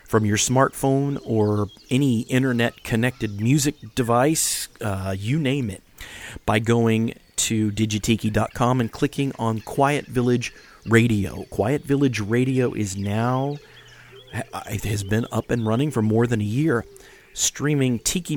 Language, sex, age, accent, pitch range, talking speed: English, male, 40-59, American, 105-130 Hz, 135 wpm